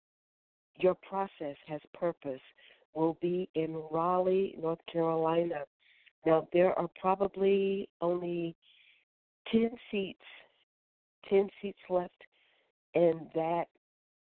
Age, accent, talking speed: 50-69, American, 95 wpm